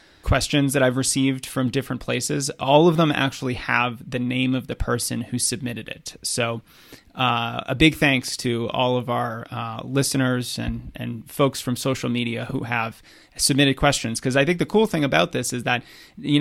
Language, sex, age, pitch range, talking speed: English, male, 30-49, 125-145 Hz, 190 wpm